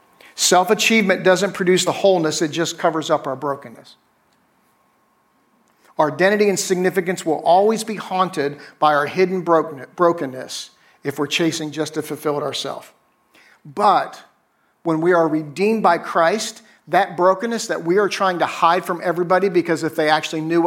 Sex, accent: male, American